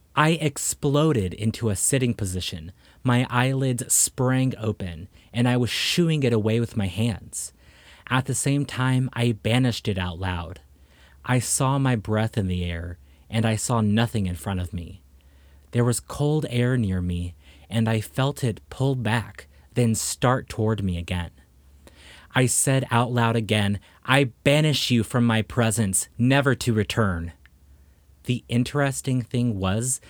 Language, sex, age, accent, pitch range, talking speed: English, male, 30-49, American, 90-125 Hz, 155 wpm